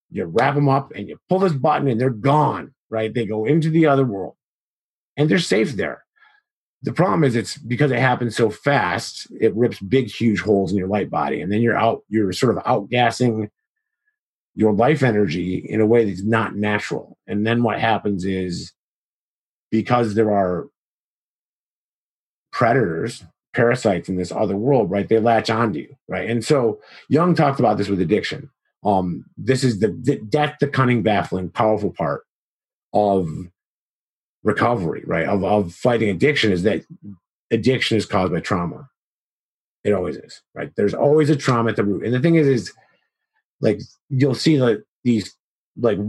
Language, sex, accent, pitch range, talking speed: English, male, American, 105-140 Hz, 175 wpm